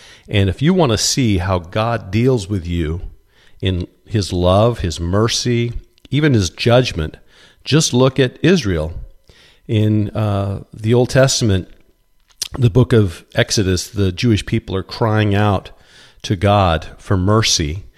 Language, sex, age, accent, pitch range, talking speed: English, male, 50-69, American, 95-120 Hz, 140 wpm